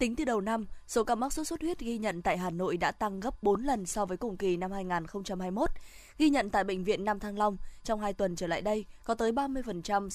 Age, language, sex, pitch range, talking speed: 20-39, Vietnamese, female, 195-245 Hz, 260 wpm